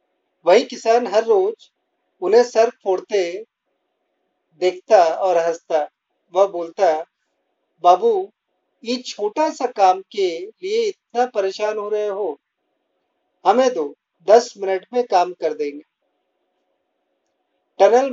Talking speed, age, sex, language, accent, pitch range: 105 wpm, 40-59, male, Hindi, native, 190-255 Hz